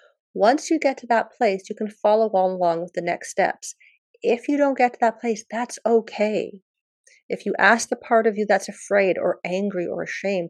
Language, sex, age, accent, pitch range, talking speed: English, female, 40-59, American, 200-265 Hz, 205 wpm